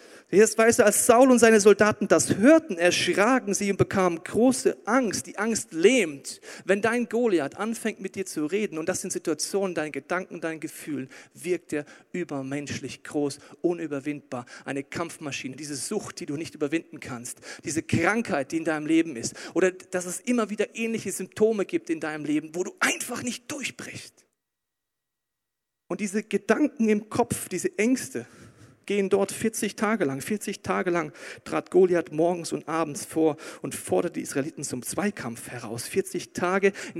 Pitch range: 165-255 Hz